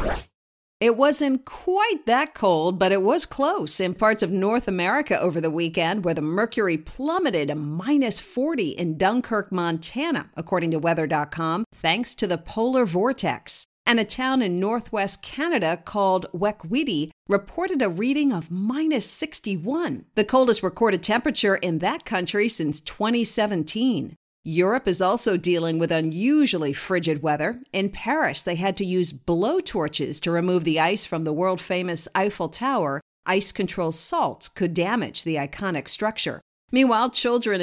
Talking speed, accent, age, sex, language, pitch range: 145 wpm, American, 50-69, female, English, 170-240 Hz